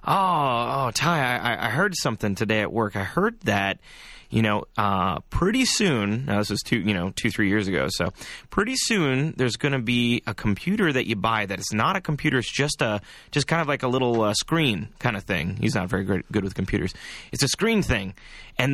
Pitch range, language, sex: 105-145 Hz, English, male